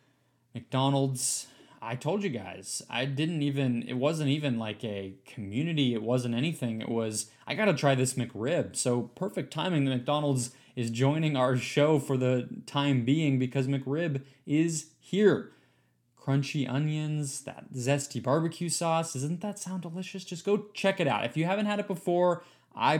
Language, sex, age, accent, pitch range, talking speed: English, male, 20-39, American, 120-150 Hz, 165 wpm